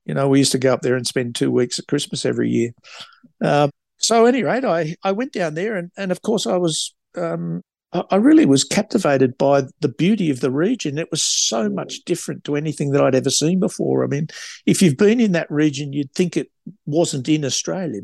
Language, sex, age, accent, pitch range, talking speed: English, male, 50-69, Australian, 135-180 Hz, 235 wpm